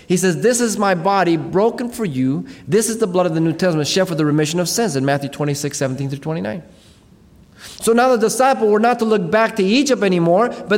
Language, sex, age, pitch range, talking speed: English, male, 30-49, 150-215 Hz, 235 wpm